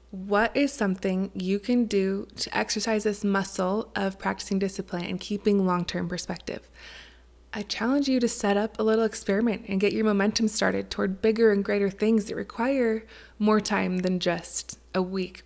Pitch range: 190-220 Hz